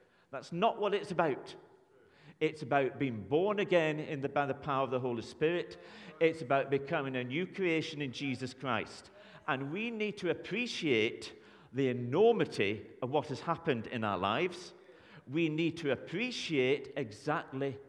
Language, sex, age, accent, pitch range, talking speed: English, male, 50-69, British, 130-190 Hz, 160 wpm